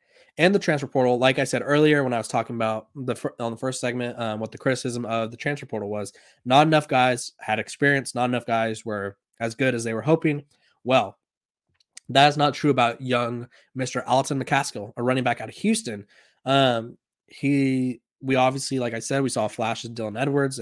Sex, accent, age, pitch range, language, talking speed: male, American, 20-39, 120-140 Hz, English, 205 wpm